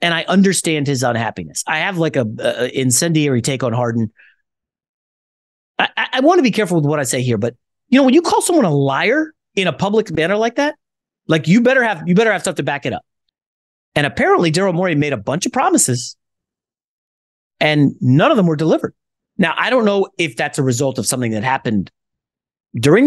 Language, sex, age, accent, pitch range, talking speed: English, male, 30-49, American, 150-225 Hz, 210 wpm